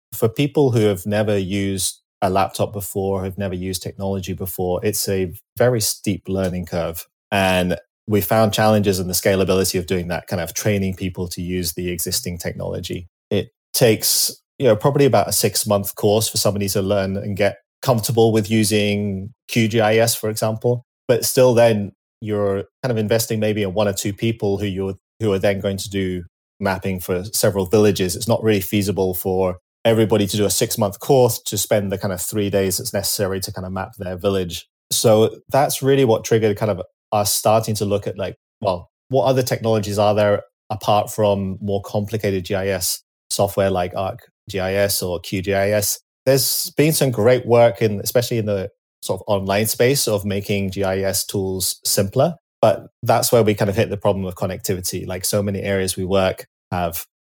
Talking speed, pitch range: 185 wpm, 95-110 Hz